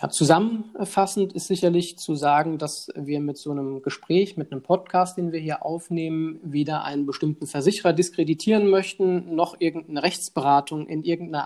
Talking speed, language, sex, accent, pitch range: 150 wpm, German, male, German, 145-165 Hz